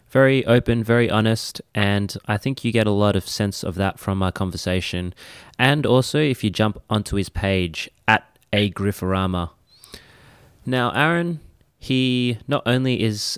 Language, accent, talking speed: English, Australian, 155 wpm